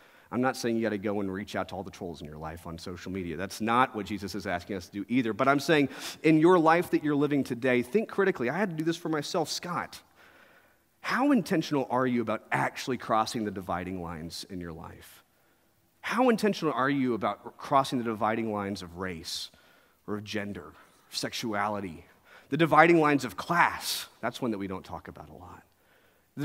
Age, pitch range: 30-49, 105-165 Hz